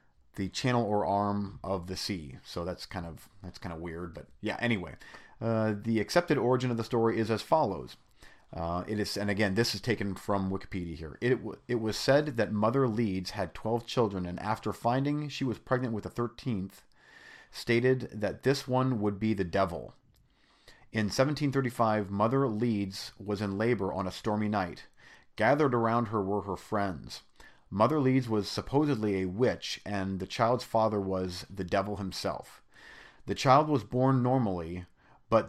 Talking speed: 175 wpm